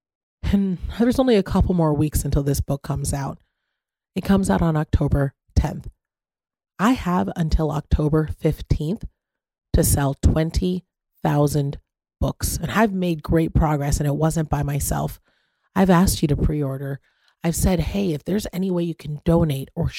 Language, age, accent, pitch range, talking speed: English, 30-49, American, 145-185 Hz, 160 wpm